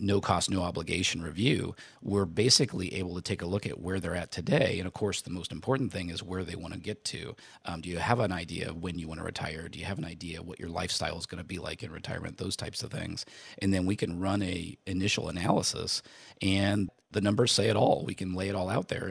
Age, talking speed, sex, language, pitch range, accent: 40-59, 260 wpm, male, English, 90-100 Hz, American